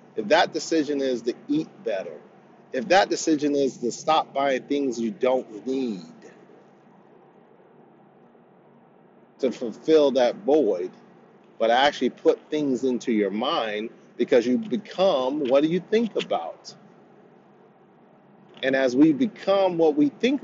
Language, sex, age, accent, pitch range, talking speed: English, male, 40-59, American, 130-195 Hz, 130 wpm